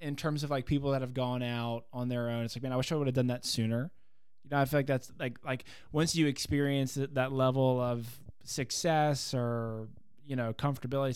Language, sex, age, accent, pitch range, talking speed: English, male, 20-39, American, 125-145 Hz, 225 wpm